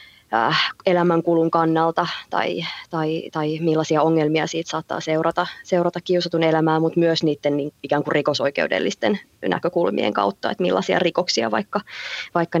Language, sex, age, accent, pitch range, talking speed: Finnish, female, 20-39, native, 155-185 Hz, 125 wpm